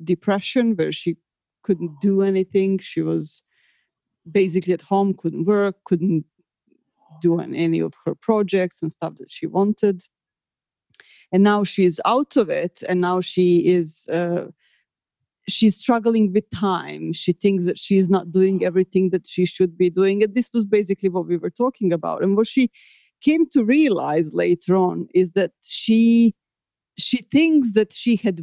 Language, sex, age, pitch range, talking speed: English, female, 40-59, 180-220 Hz, 165 wpm